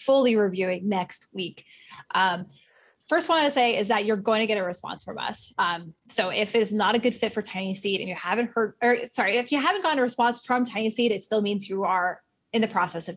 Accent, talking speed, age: American, 245 wpm, 20-39